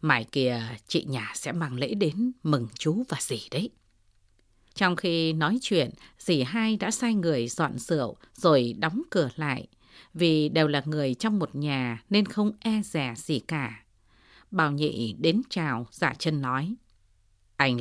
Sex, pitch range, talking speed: female, 115-175 Hz, 165 wpm